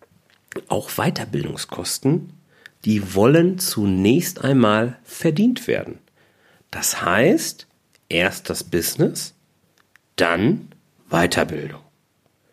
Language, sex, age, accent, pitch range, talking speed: German, male, 40-59, German, 95-130 Hz, 70 wpm